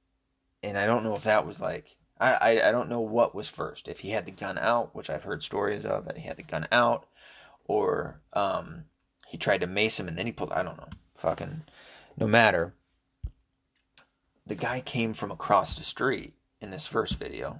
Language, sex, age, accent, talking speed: English, male, 20-39, American, 210 wpm